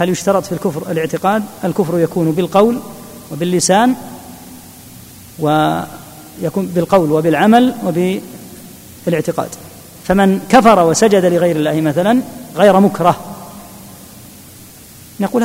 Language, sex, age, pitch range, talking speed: Arabic, female, 40-59, 165-225 Hz, 85 wpm